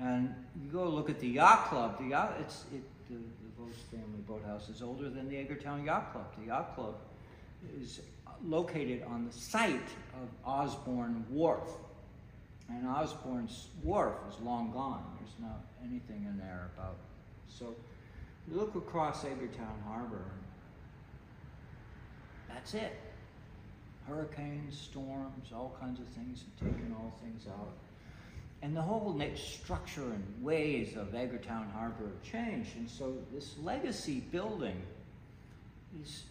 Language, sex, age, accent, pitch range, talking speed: English, male, 60-79, American, 110-140 Hz, 135 wpm